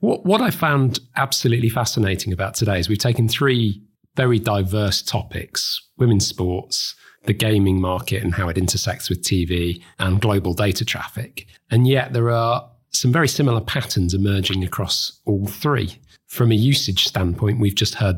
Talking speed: 160 wpm